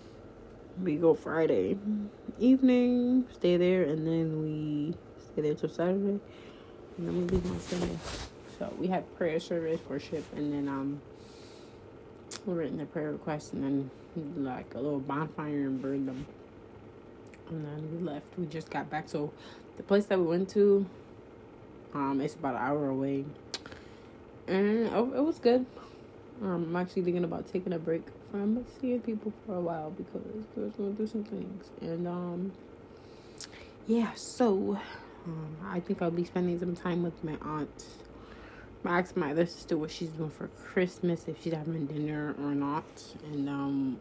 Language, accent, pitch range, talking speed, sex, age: English, American, 145-185 Hz, 170 wpm, female, 20-39